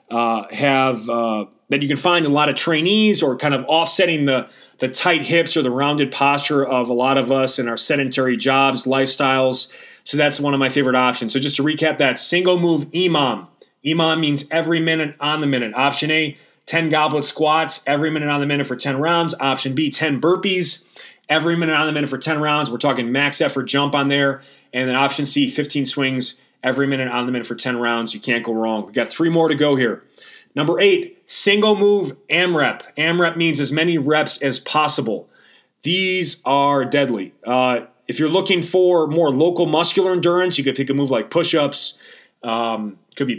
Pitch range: 130-160 Hz